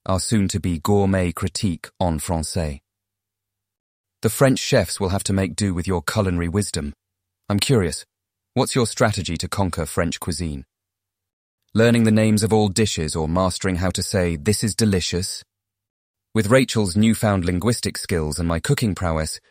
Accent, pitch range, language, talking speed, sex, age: British, 90-110 Hz, English, 155 wpm, male, 30-49